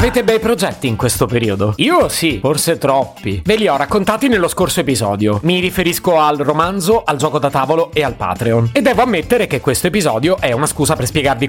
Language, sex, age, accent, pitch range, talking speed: Italian, male, 30-49, native, 120-175 Hz, 205 wpm